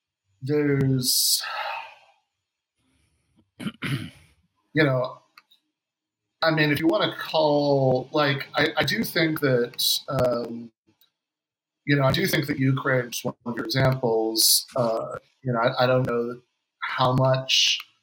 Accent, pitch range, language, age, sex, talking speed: American, 110-140 Hz, English, 40-59, male, 125 wpm